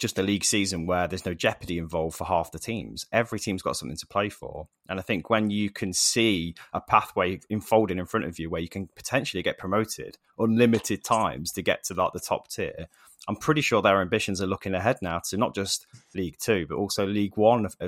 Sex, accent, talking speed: male, British, 225 wpm